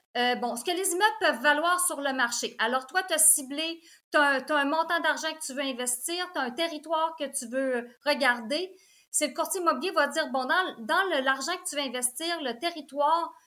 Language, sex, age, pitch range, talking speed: French, female, 30-49, 250-330 Hz, 225 wpm